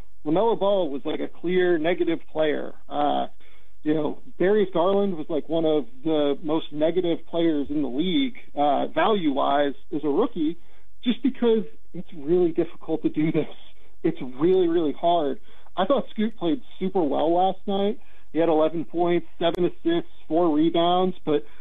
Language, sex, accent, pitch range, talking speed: English, male, American, 155-210 Hz, 160 wpm